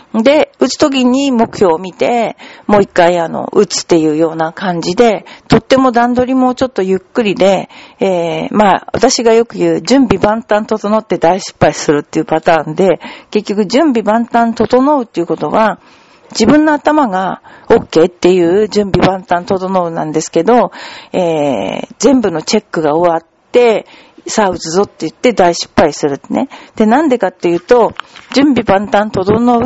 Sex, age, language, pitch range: female, 50-69, Japanese, 180-250 Hz